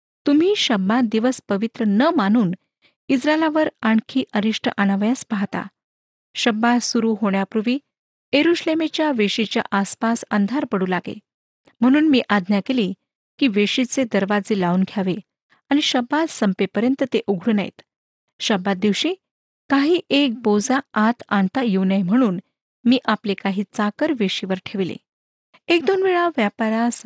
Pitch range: 200-265 Hz